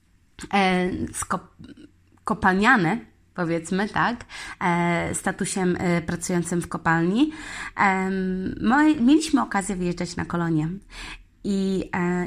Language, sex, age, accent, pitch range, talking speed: Polish, female, 20-39, native, 175-200 Hz, 95 wpm